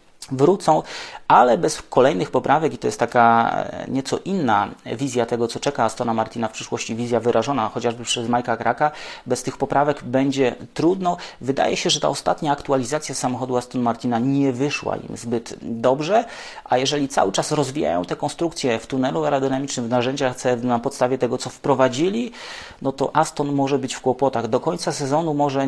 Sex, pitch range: male, 120-150 Hz